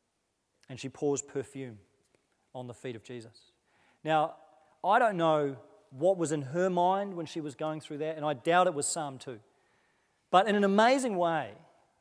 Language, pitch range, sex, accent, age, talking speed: English, 145-180 Hz, male, Australian, 30-49, 180 wpm